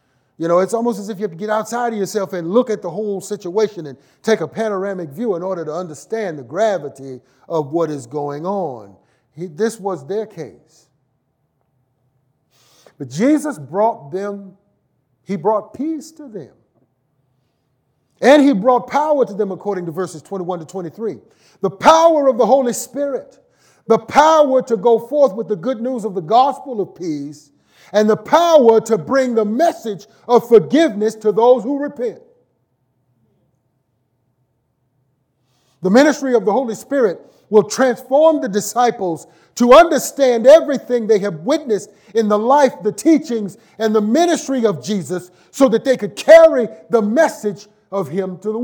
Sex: male